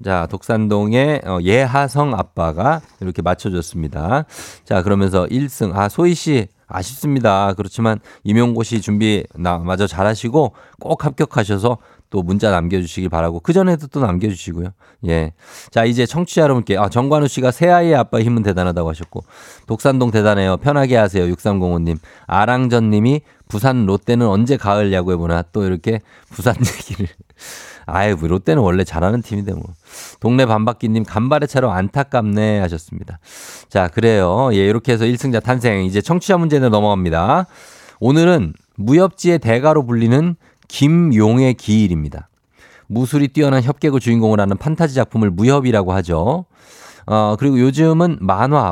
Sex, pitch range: male, 95-135 Hz